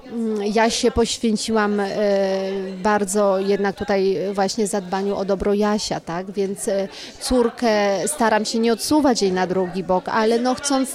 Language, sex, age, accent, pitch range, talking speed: Polish, female, 30-49, native, 195-230 Hz, 135 wpm